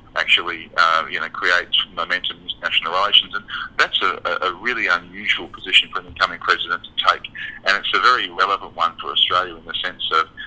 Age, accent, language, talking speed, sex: 40-59, Australian, English, 195 wpm, male